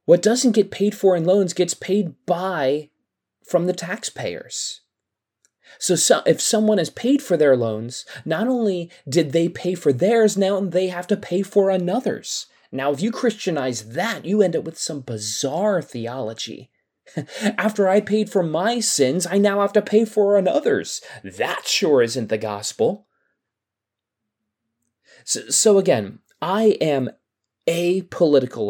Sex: male